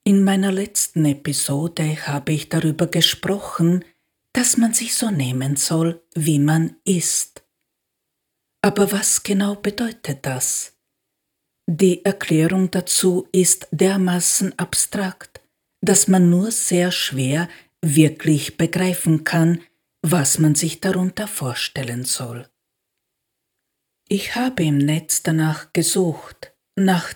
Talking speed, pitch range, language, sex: 110 wpm, 155-190 Hz, German, female